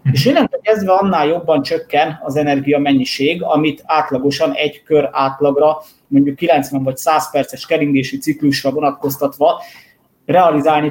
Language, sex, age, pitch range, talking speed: Hungarian, male, 30-49, 140-185 Hz, 120 wpm